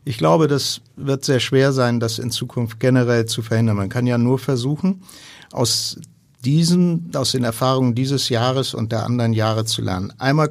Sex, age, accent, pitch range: male, 50-69, German, 115-135 Hz